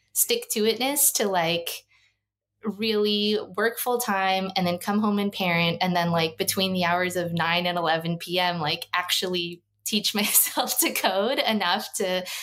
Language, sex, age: English, female, 20-39